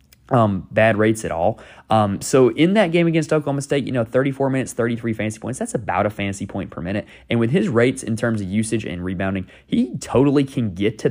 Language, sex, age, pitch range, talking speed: English, male, 20-39, 95-120 Hz, 225 wpm